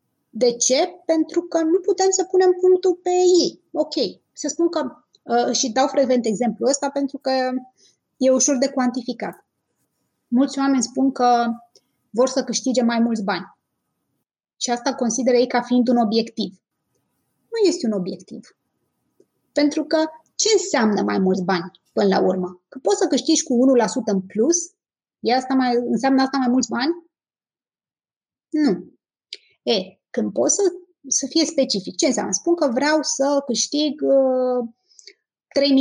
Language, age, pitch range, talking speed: Romanian, 20-39, 235-315 Hz, 150 wpm